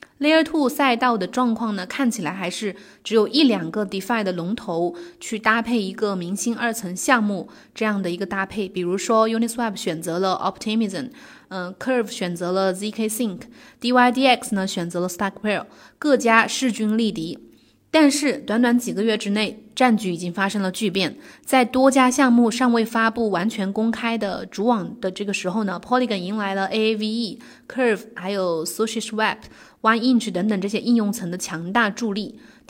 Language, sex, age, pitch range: Chinese, female, 20-39, 195-250 Hz